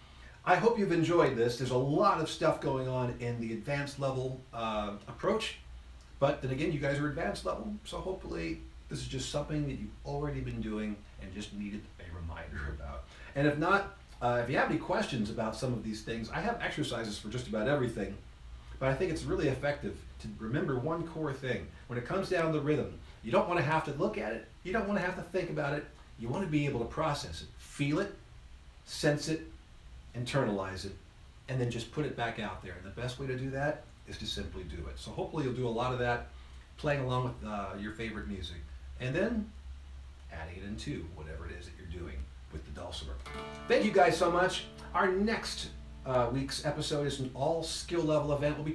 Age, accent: 40-59, American